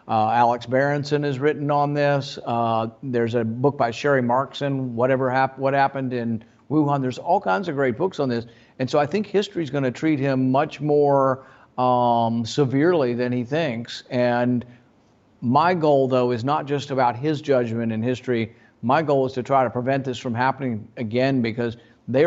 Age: 50-69